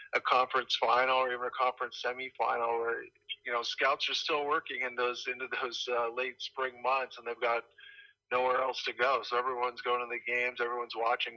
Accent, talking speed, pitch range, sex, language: American, 200 wpm, 120-150 Hz, male, English